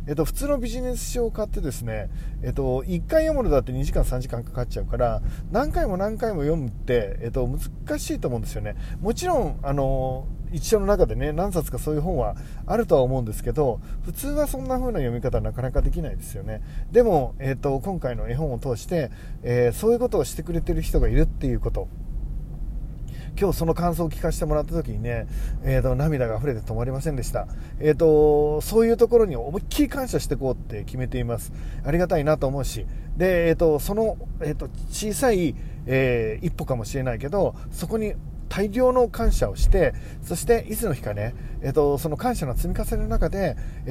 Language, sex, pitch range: Japanese, male, 125-170 Hz